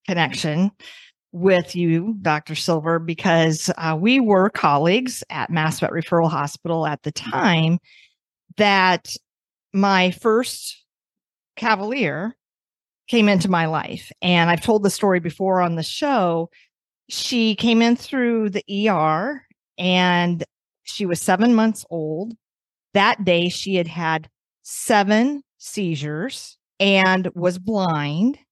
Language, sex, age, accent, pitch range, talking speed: English, female, 40-59, American, 165-200 Hz, 120 wpm